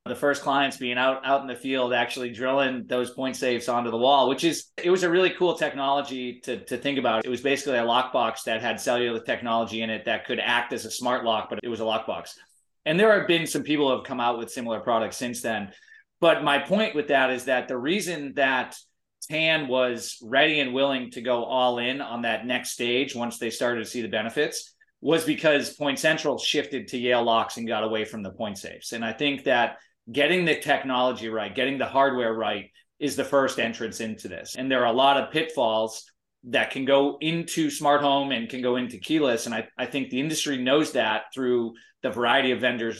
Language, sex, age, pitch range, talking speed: English, male, 20-39, 120-145 Hz, 225 wpm